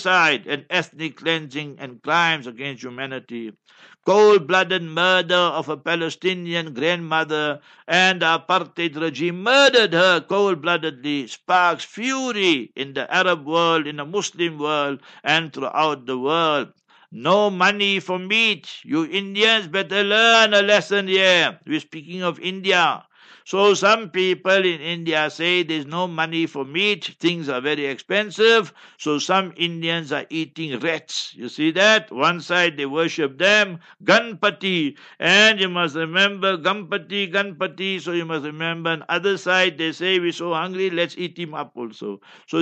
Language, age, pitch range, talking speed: English, 60-79, 160-195 Hz, 145 wpm